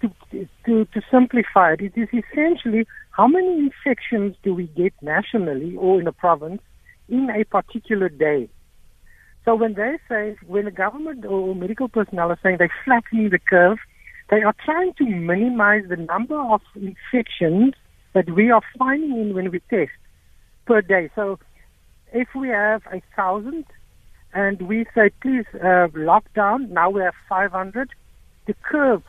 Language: English